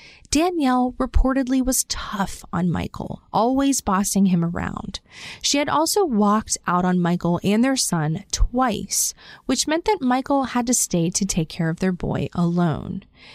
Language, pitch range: English, 195-270 Hz